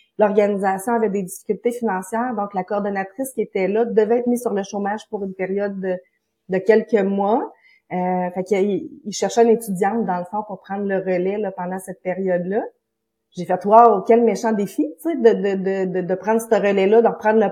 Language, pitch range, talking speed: French, 200-240 Hz, 210 wpm